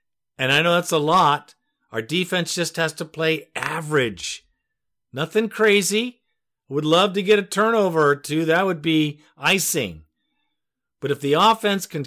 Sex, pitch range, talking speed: male, 125-180 Hz, 160 wpm